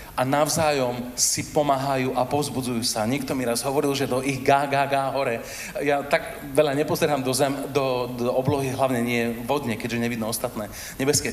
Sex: male